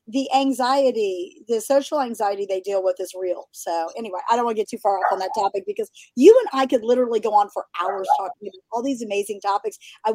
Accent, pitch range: American, 210-270 Hz